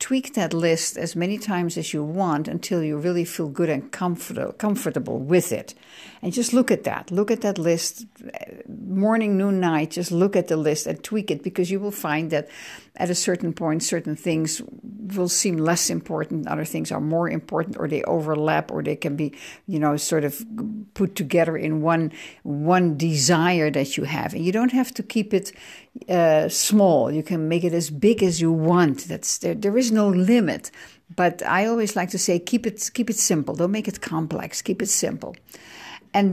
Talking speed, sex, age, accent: 200 wpm, female, 60-79, Dutch